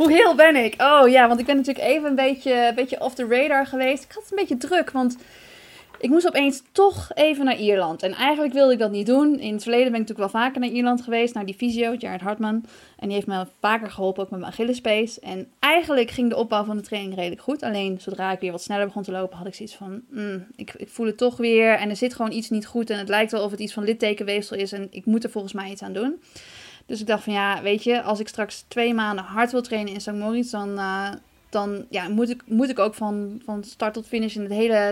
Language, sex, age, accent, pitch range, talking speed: Dutch, female, 20-39, Dutch, 200-245 Hz, 265 wpm